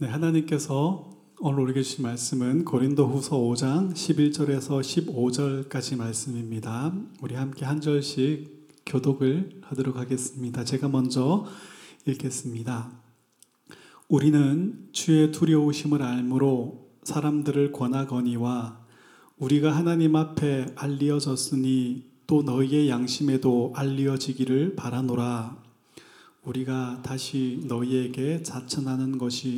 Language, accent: Korean, native